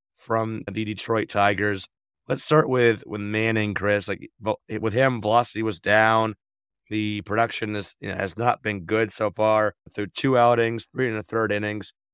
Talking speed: 175 wpm